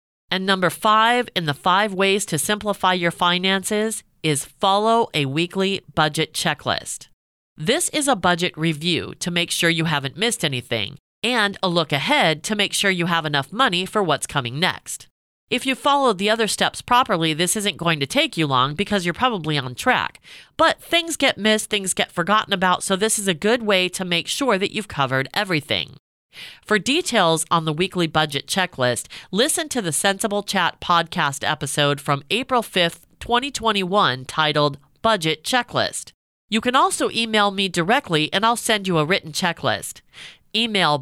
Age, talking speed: 40-59, 175 wpm